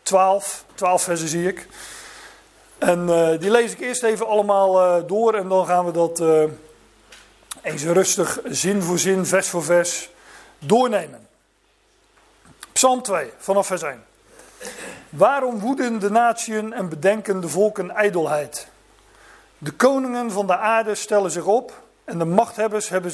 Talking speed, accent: 145 wpm, Dutch